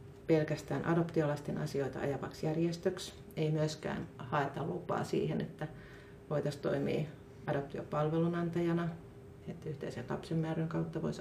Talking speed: 105 wpm